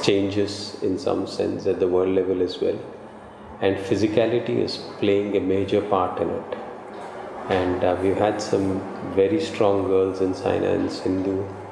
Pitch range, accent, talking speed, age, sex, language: 95-100 Hz, Indian, 160 wpm, 30-49, male, English